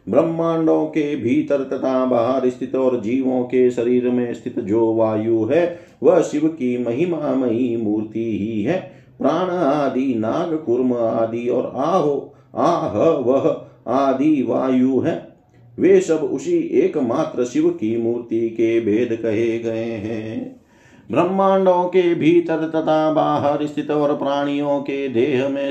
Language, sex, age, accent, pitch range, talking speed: Hindi, male, 50-69, native, 125-160 Hz, 140 wpm